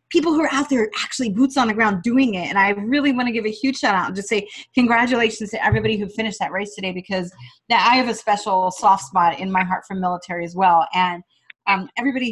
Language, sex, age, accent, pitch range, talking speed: English, female, 30-49, American, 185-250 Hz, 250 wpm